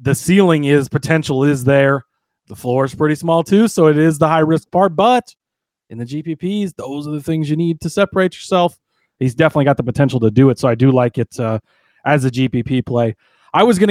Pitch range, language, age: 130-155 Hz, English, 30-49